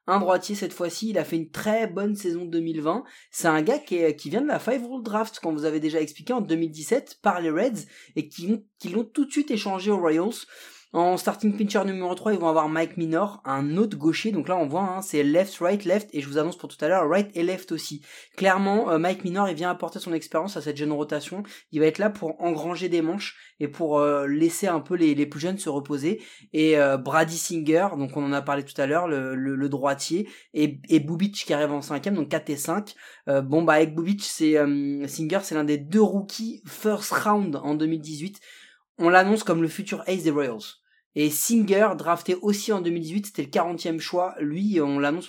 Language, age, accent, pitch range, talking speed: French, 30-49, French, 155-200 Hz, 230 wpm